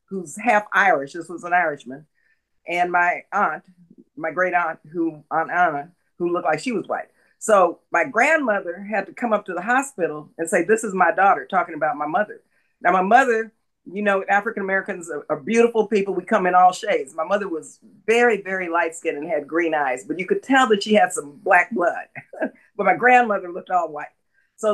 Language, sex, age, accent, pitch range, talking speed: English, female, 50-69, American, 165-215 Hz, 205 wpm